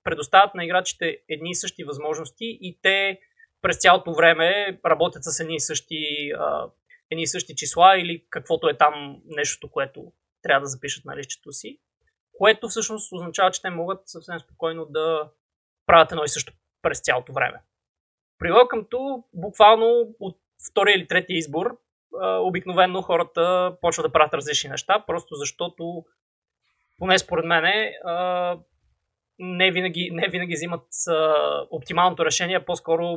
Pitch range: 155-190 Hz